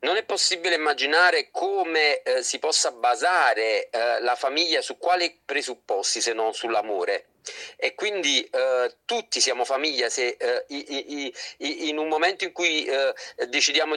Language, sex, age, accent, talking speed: Italian, male, 40-59, native, 155 wpm